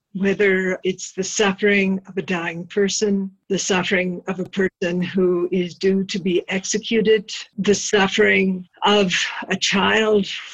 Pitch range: 185-215 Hz